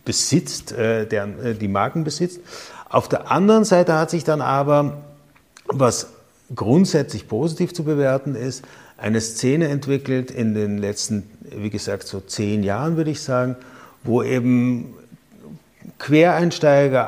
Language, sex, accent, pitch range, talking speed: German, male, German, 120-150 Hz, 125 wpm